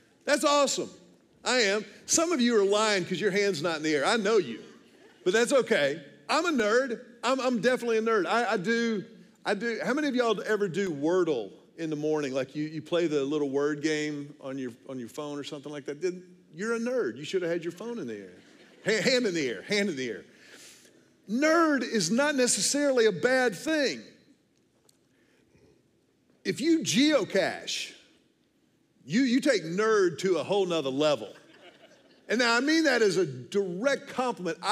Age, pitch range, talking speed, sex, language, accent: 50-69, 170-240 Hz, 190 wpm, male, English, American